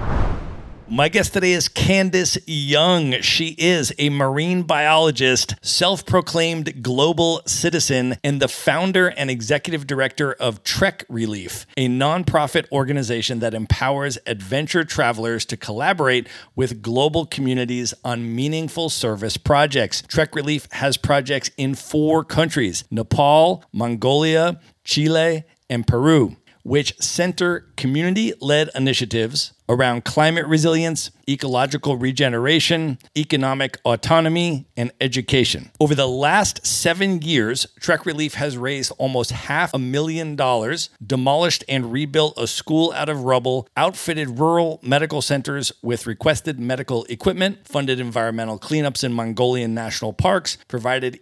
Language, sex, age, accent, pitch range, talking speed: English, male, 40-59, American, 125-155 Hz, 120 wpm